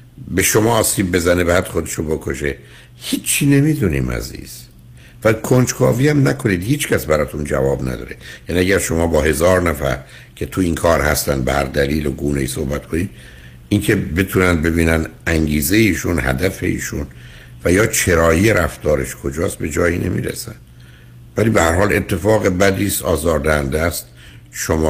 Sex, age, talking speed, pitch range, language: male, 60-79, 150 wpm, 70-95 Hz, Persian